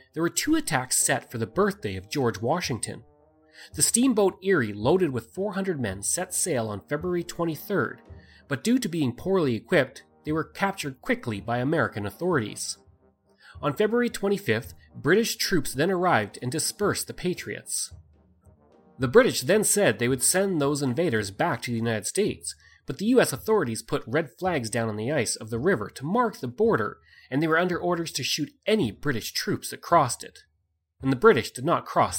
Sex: male